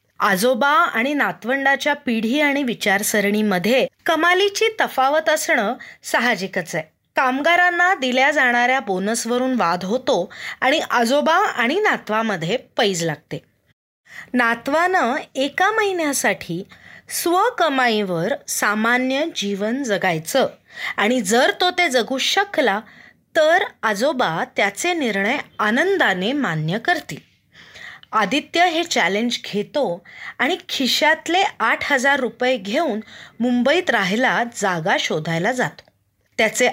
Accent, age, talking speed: native, 20-39, 95 wpm